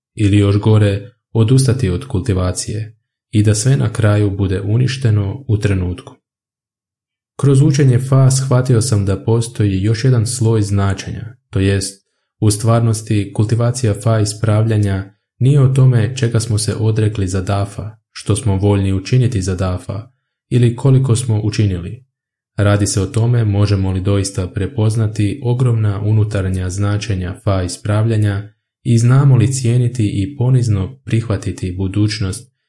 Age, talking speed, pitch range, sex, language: 20-39, 135 wpm, 100-120 Hz, male, Croatian